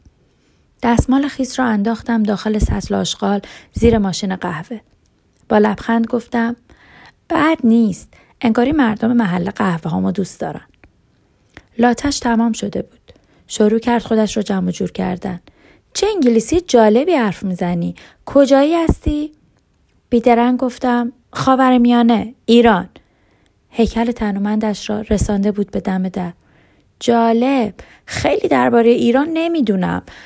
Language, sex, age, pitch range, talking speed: English, female, 20-39, 195-255 Hz, 115 wpm